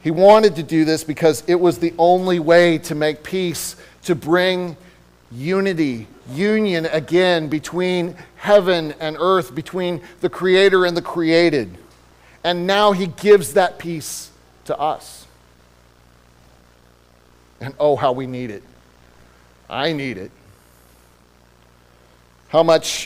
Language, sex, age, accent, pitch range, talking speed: English, male, 40-59, American, 120-165 Hz, 125 wpm